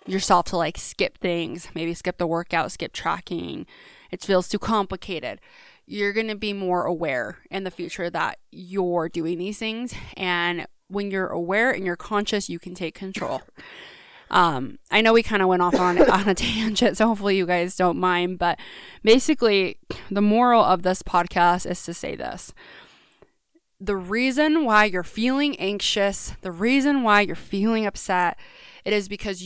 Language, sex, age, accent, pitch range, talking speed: English, female, 20-39, American, 185-230 Hz, 170 wpm